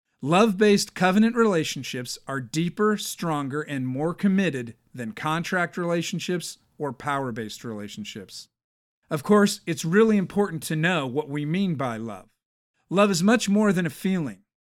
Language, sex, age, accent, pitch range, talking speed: English, male, 50-69, American, 145-200 Hz, 140 wpm